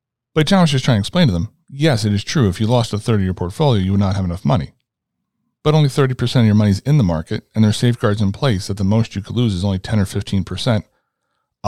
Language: English